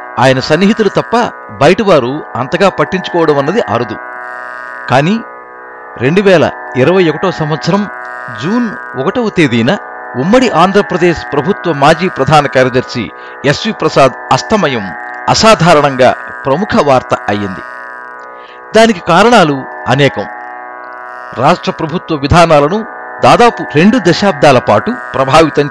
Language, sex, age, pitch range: Telugu, male, 50-69, 120-175 Hz